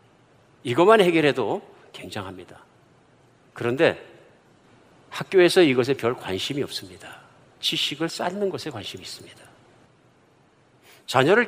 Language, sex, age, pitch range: Korean, male, 50-69, 130-190 Hz